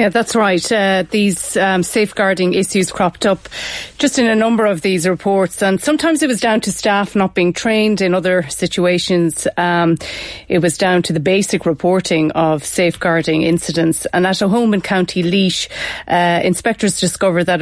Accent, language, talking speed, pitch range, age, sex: Irish, English, 175 wpm, 175-200 Hz, 30-49, female